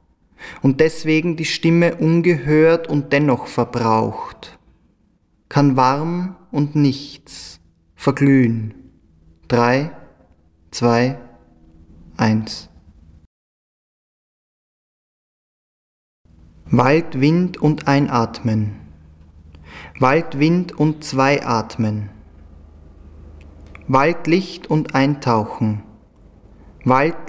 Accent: German